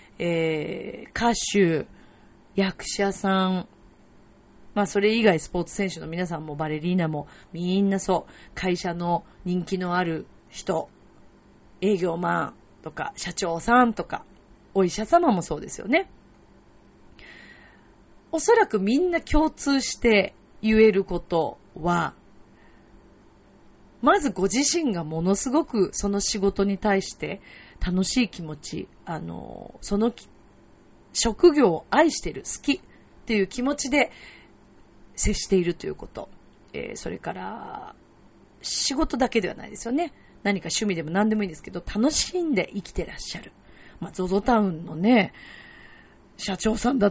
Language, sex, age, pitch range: Japanese, female, 40-59, 175-230 Hz